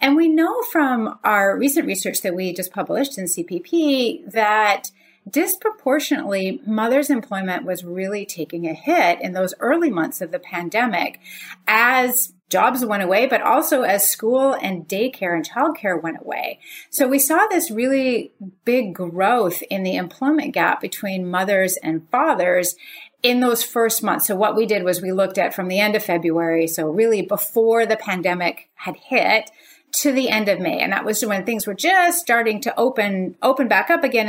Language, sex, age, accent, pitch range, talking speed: English, female, 30-49, American, 185-270 Hz, 175 wpm